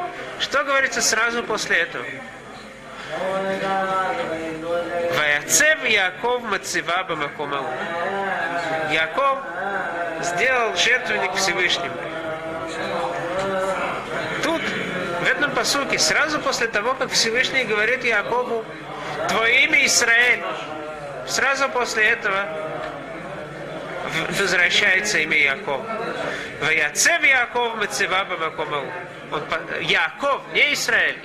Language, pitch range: Russian, 170-245 Hz